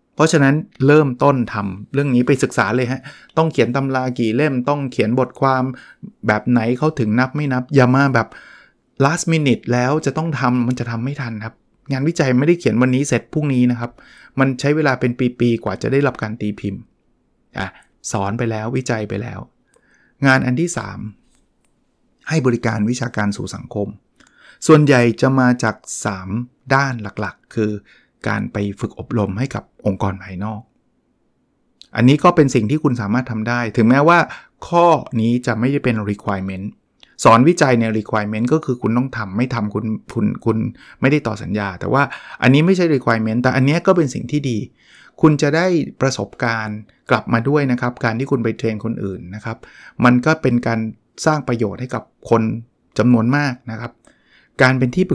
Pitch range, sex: 110-140 Hz, male